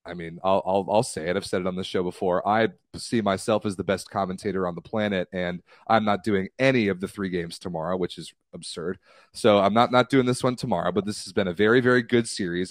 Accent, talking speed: American, 255 wpm